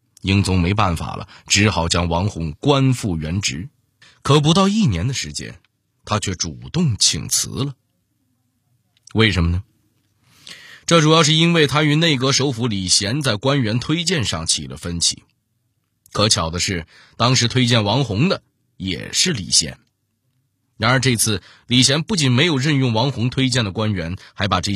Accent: native